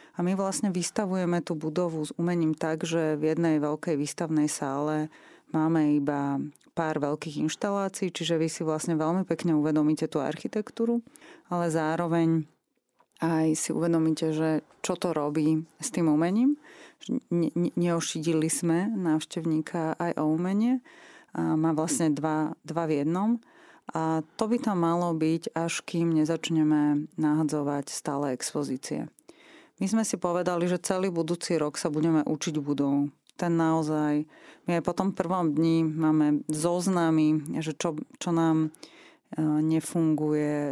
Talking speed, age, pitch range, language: 135 wpm, 30-49, 155-175 Hz, Slovak